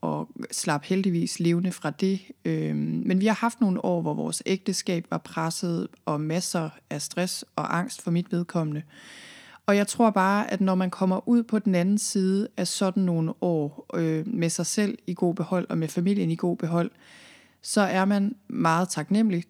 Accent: native